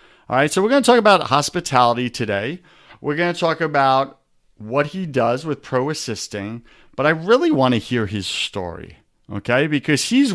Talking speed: 185 wpm